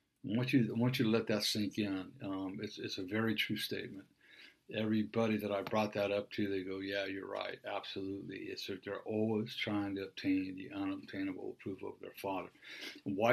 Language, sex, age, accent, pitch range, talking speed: English, male, 60-79, American, 105-130 Hz, 205 wpm